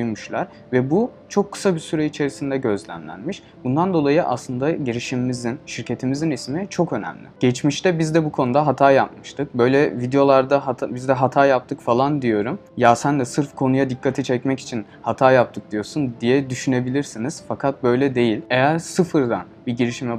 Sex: male